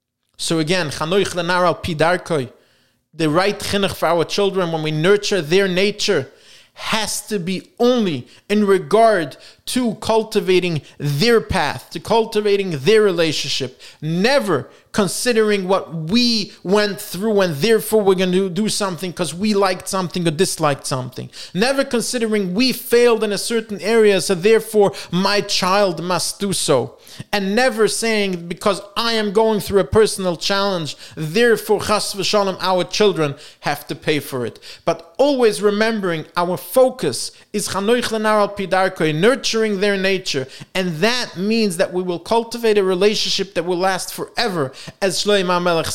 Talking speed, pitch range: 135 wpm, 165-210 Hz